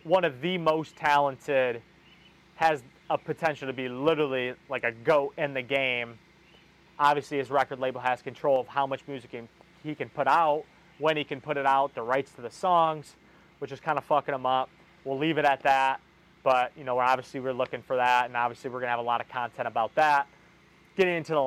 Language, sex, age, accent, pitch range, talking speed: English, male, 30-49, American, 130-155 Hz, 220 wpm